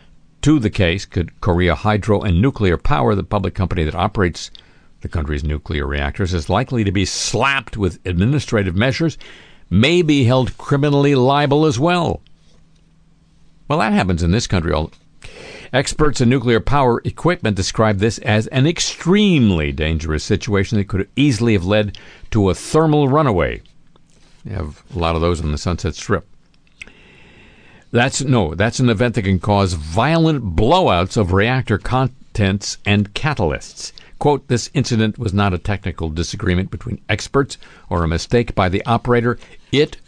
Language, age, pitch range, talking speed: English, 60-79, 95-135 Hz, 155 wpm